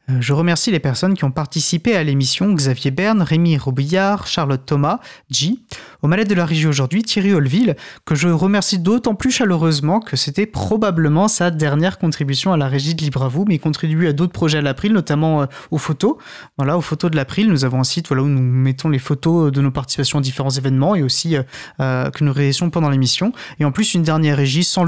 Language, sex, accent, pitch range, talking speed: French, male, French, 140-180 Hz, 210 wpm